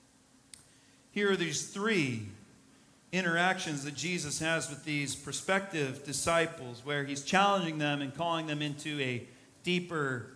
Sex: male